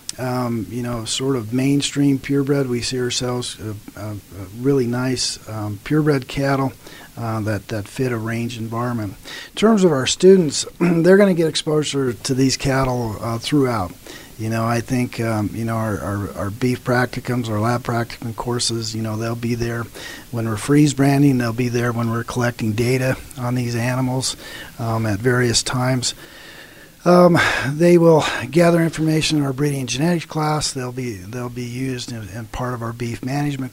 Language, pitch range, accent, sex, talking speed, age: English, 115-135 Hz, American, male, 175 wpm, 40-59